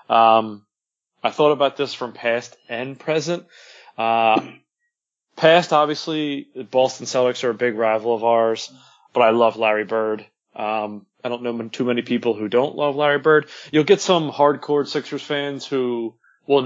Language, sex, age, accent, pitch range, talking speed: English, male, 20-39, American, 115-140 Hz, 175 wpm